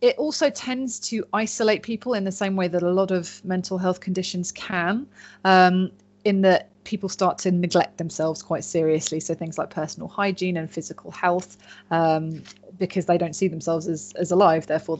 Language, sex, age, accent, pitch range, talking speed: English, female, 30-49, British, 165-200 Hz, 185 wpm